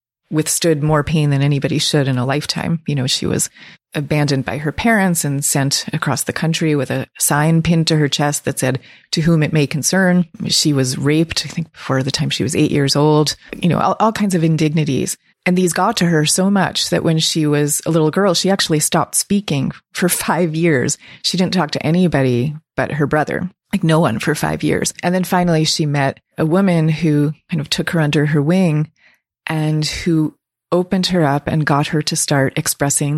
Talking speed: 210 wpm